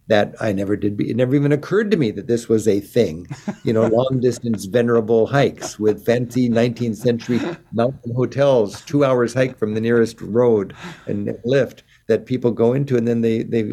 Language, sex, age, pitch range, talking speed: English, male, 60-79, 110-135 Hz, 190 wpm